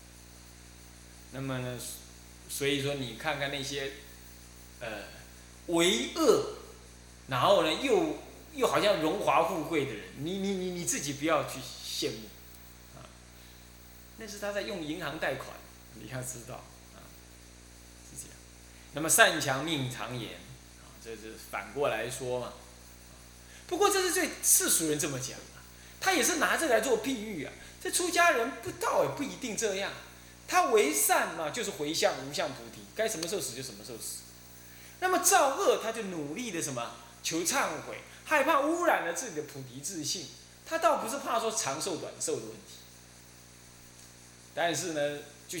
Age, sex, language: 20-39, male, Chinese